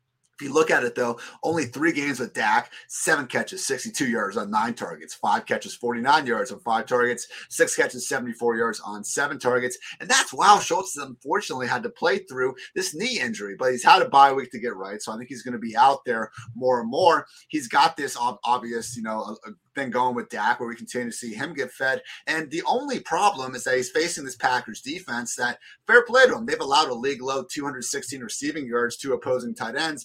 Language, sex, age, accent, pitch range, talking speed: English, male, 30-49, American, 120-175 Hz, 225 wpm